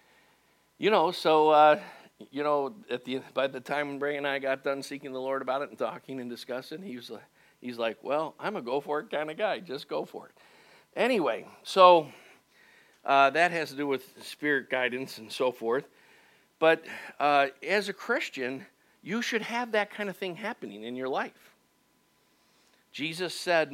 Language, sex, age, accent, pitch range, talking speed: English, male, 50-69, American, 125-155 Hz, 180 wpm